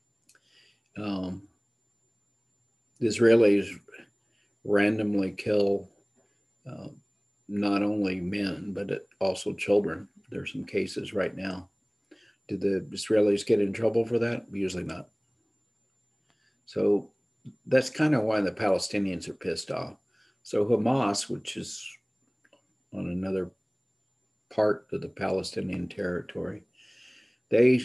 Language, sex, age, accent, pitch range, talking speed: English, male, 50-69, American, 95-115 Hz, 105 wpm